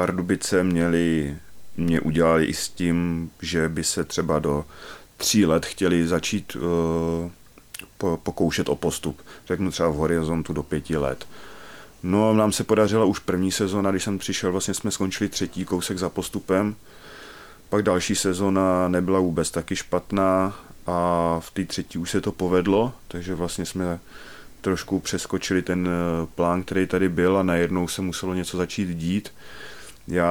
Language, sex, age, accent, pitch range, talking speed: Czech, male, 30-49, native, 80-95 Hz, 155 wpm